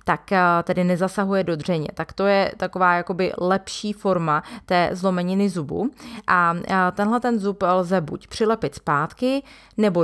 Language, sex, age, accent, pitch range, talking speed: Czech, female, 30-49, native, 170-195 Hz, 145 wpm